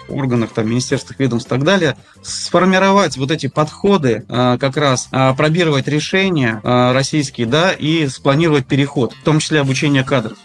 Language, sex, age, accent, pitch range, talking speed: Russian, male, 30-49, native, 125-160 Hz, 155 wpm